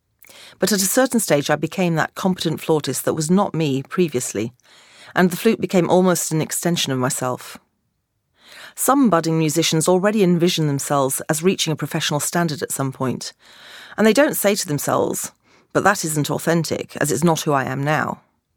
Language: English